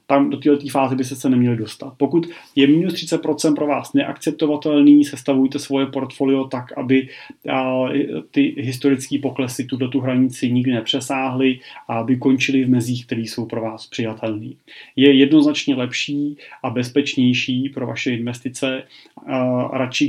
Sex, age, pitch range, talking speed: male, 30-49, 120-140 Hz, 145 wpm